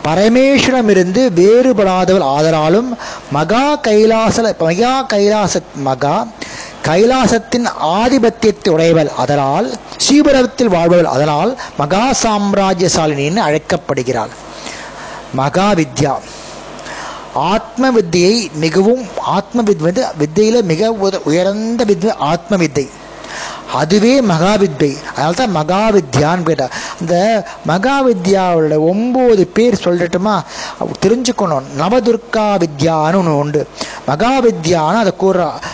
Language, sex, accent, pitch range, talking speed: Tamil, male, native, 165-230 Hz, 85 wpm